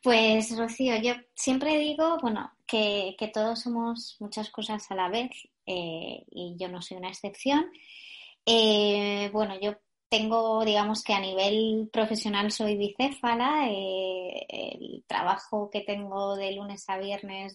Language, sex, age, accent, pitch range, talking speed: Spanish, male, 20-39, Spanish, 205-245 Hz, 140 wpm